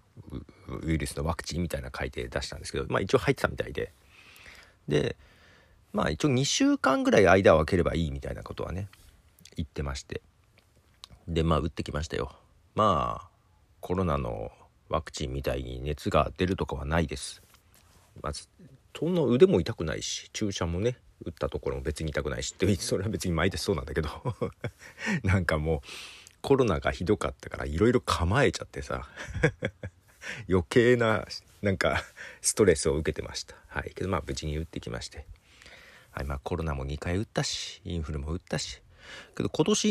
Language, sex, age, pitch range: Japanese, male, 40-59, 80-105 Hz